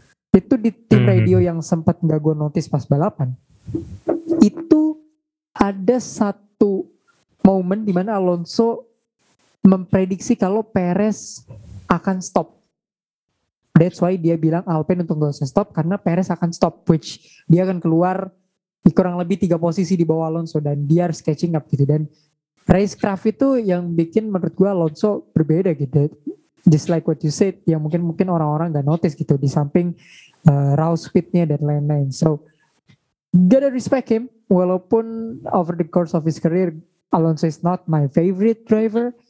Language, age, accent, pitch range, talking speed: Indonesian, 20-39, native, 155-200 Hz, 150 wpm